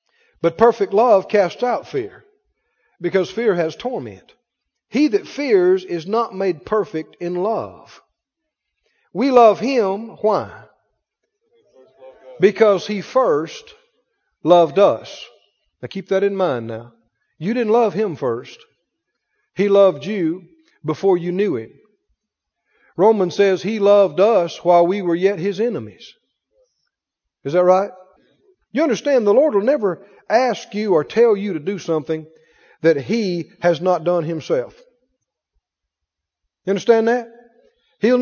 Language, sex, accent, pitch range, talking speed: English, male, American, 175-245 Hz, 130 wpm